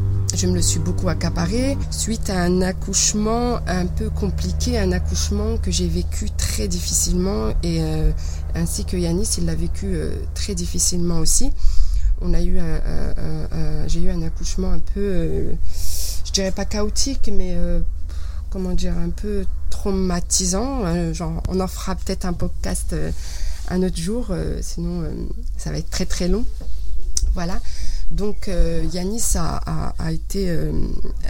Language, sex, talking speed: French, female, 170 wpm